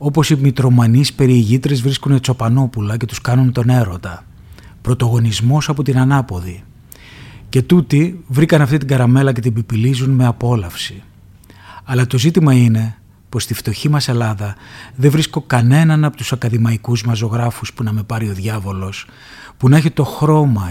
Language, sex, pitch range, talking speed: Greek, male, 115-140 Hz, 155 wpm